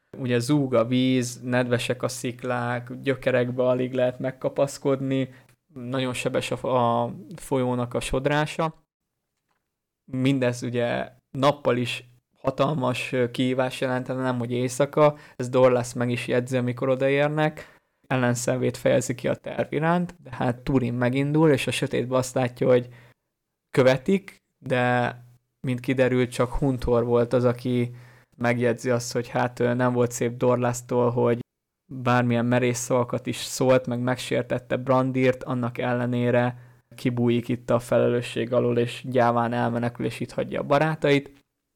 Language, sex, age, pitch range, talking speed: Hungarian, male, 20-39, 120-130 Hz, 130 wpm